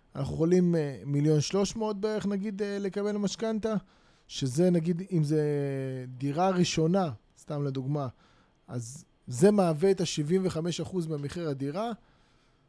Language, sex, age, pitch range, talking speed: Hebrew, male, 20-39, 145-190 Hz, 125 wpm